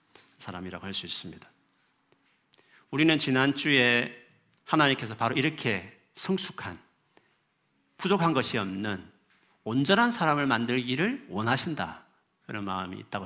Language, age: Korean, 50-69